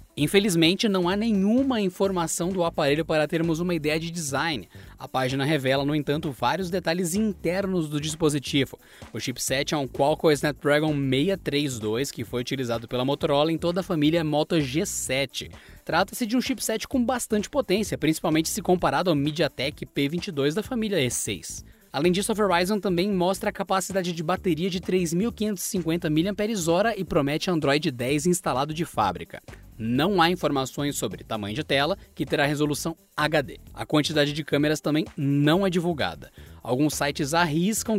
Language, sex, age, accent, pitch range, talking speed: Portuguese, male, 20-39, Brazilian, 140-190 Hz, 155 wpm